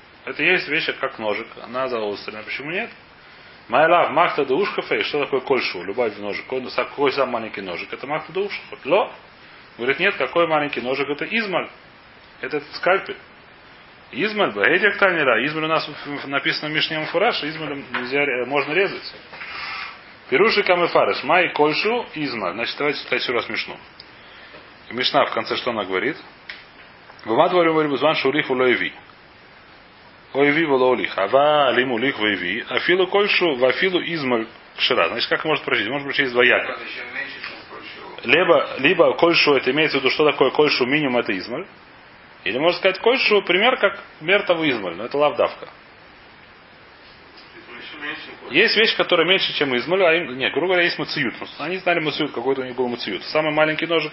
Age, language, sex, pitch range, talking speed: 30-49, Russian, male, 140-180 Hz, 155 wpm